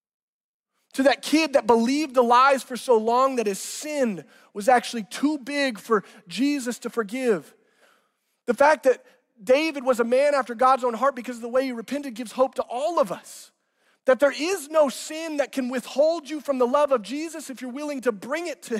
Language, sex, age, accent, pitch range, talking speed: English, male, 30-49, American, 230-290 Hz, 210 wpm